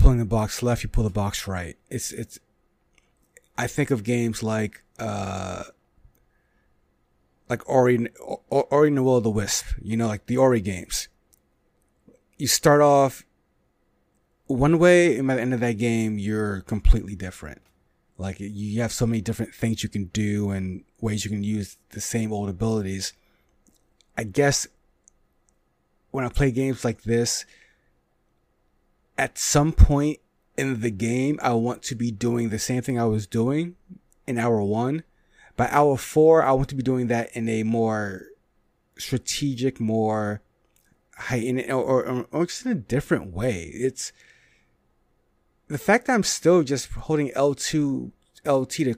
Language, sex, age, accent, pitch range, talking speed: English, male, 30-49, American, 105-135 Hz, 155 wpm